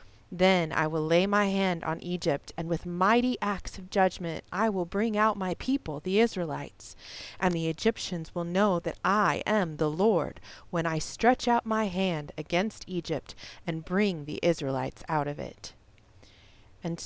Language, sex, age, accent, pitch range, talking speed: English, female, 30-49, American, 155-205 Hz, 170 wpm